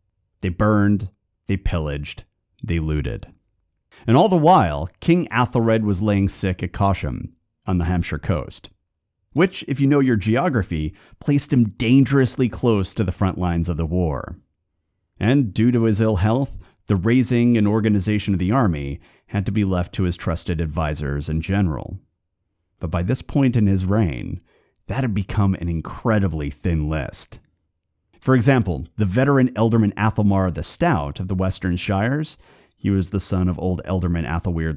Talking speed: 165 wpm